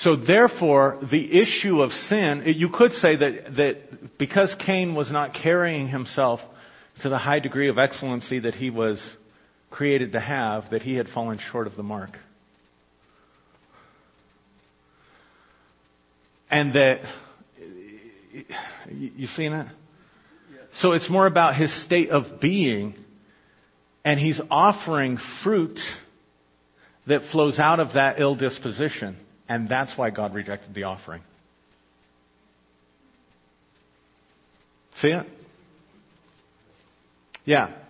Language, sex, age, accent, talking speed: English, male, 50-69, American, 115 wpm